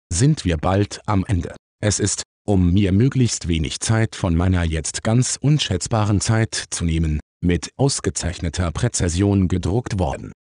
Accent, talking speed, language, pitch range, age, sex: German, 145 wpm, German, 85-110 Hz, 50-69, male